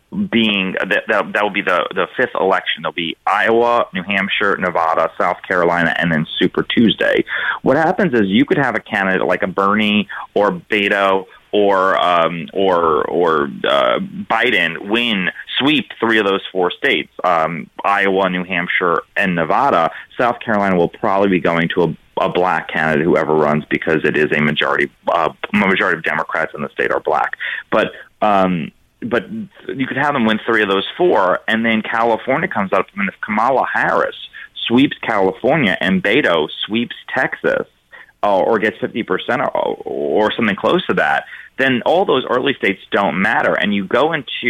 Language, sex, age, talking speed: English, male, 30-49, 175 wpm